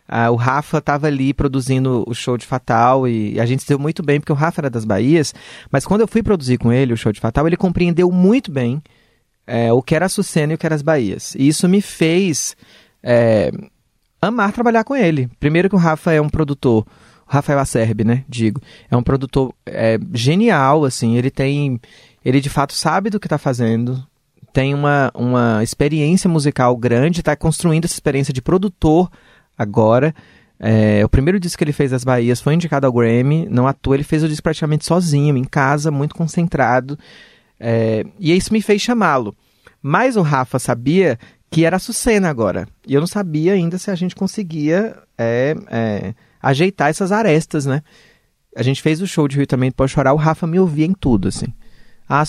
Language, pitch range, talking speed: Portuguese, 125-165 Hz, 195 wpm